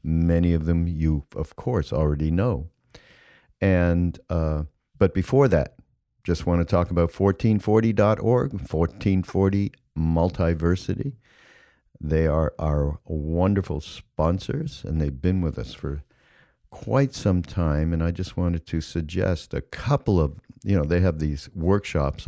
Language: English